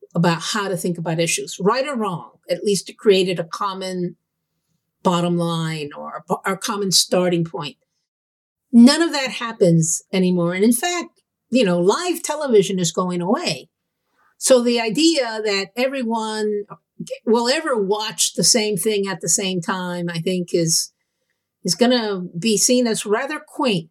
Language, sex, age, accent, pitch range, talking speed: English, female, 50-69, American, 180-250 Hz, 155 wpm